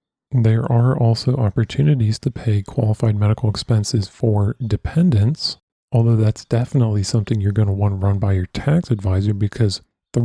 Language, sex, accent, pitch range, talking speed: English, male, American, 105-125 Hz, 160 wpm